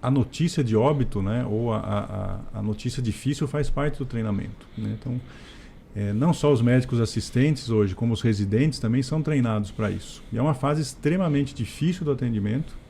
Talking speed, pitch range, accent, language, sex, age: 185 wpm, 110-140 Hz, Brazilian, Portuguese, male, 40-59